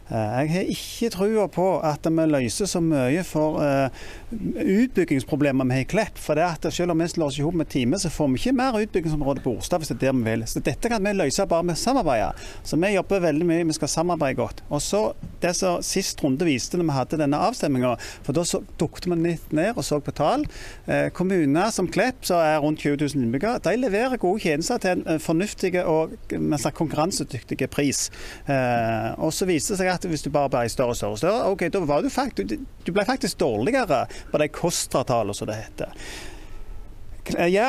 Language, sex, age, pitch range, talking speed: English, male, 40-59, 135-185 Hz, 215 wpm